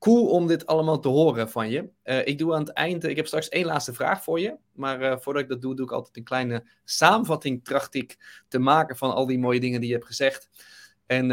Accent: Dutch